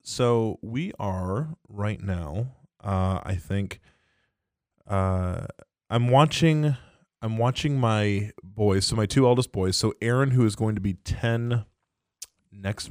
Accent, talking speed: American, 135 wpm